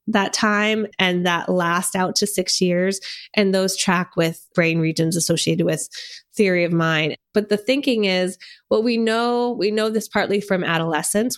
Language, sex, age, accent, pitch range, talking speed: English, female, 20-39, American, 170-210 Hz, 175 wpm